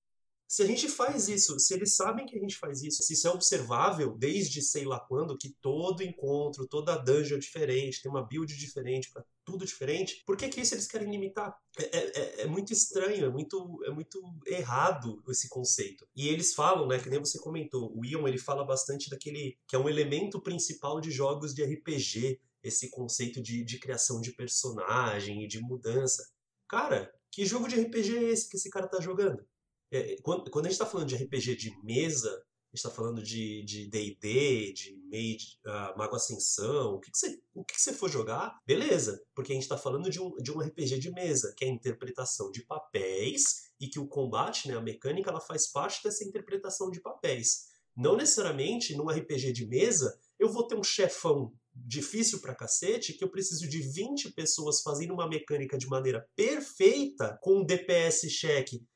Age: 30-49